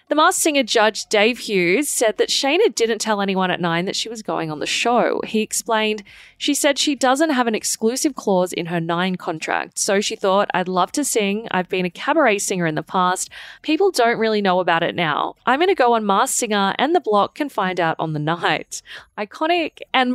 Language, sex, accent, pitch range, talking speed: English, female, Australian, 185-260 Hz, 225 wpm